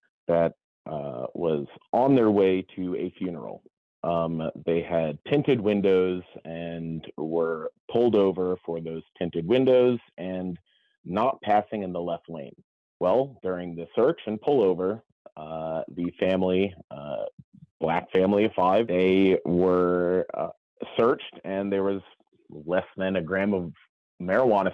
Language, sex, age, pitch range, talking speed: English, male, 30-49, 85-105 Hz, 135 wpm